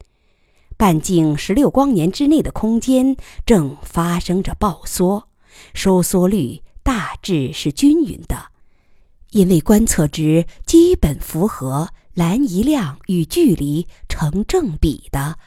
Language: Chinese